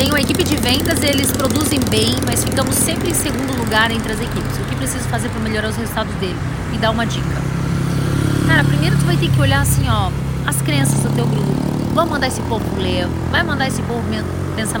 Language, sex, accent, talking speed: Portuguese, female, Brazilian, 225 wpm